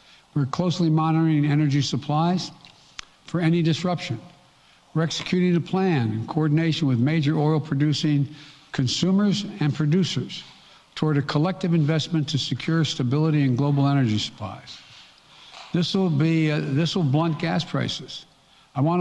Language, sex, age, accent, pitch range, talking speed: English, male, 60-79, American, 135-160 Hz, 135 wpm